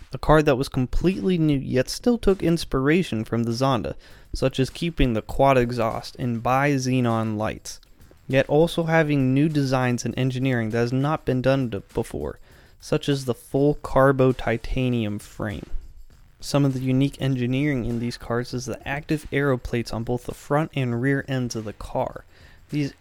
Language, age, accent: English, 20-39, American